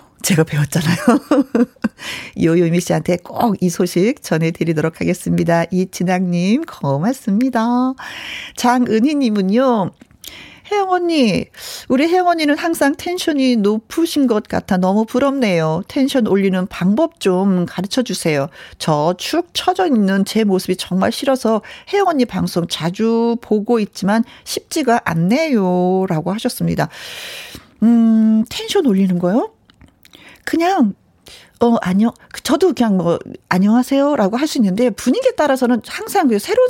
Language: Korean